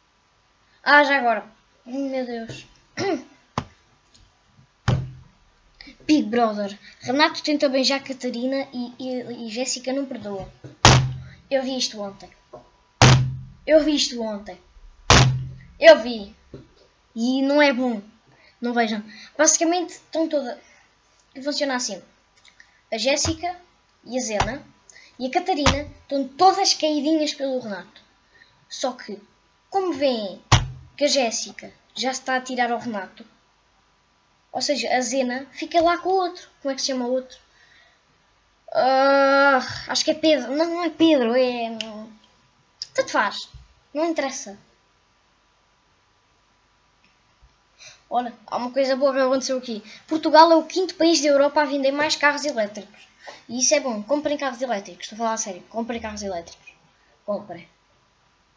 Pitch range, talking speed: 220-295 Hz, 135 wpm